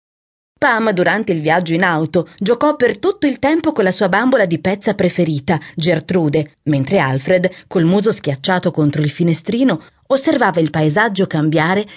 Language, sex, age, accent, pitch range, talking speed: Italian, female, 30-49, native, 155-220 Hz, 155 wpm